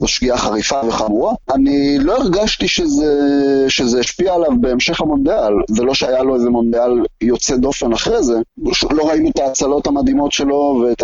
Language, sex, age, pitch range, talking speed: Hebrew, male, 30-49, 120-185 Hz, 165 wpm